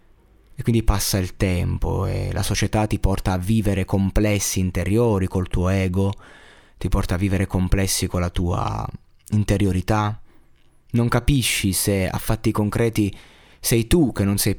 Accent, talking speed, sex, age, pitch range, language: native, 150 wpm, male, 20-39, 90-110 Hz, Italian